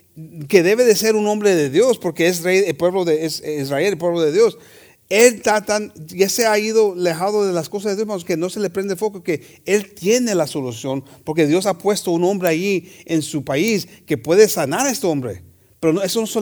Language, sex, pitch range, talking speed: English, male, 145-190 Hz, 240 wpm